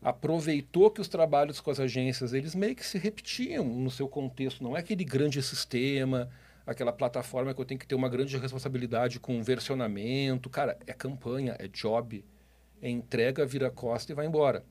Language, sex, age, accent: Portuguese, male, 40-59, Brazilian